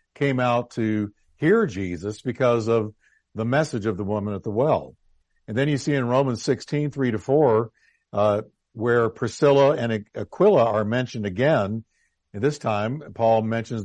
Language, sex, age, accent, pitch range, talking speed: English, male, 50-69, American, 105-140 Hz, 150 wpm